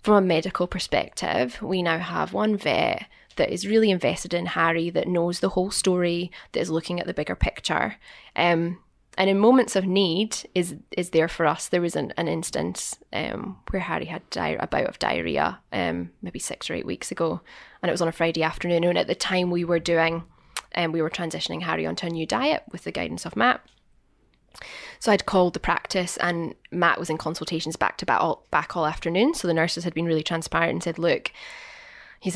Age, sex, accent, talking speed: 10-29, female, British, 215 wpm